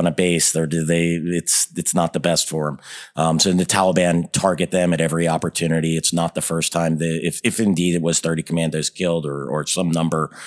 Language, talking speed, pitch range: English, 225 wpm, 80-90 Hz